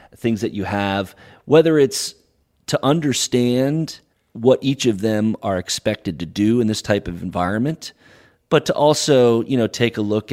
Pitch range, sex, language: 95-120 Hz, male, English